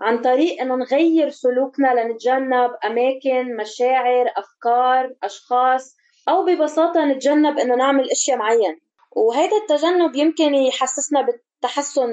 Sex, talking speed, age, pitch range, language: female, 110 wpm, 20-39, 235-290 Hz, Arabic